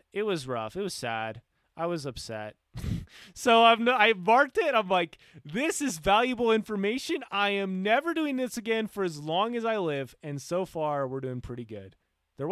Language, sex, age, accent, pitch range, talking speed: English, male, 20-39, American, 135-205 Hz, 190 wpm